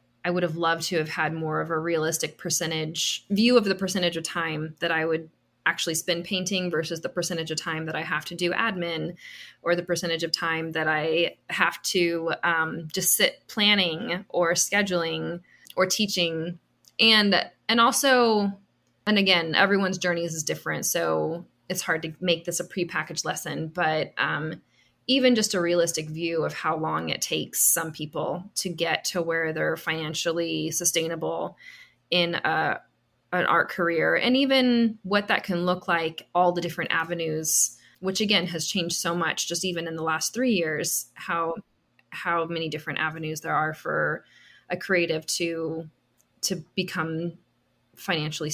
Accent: American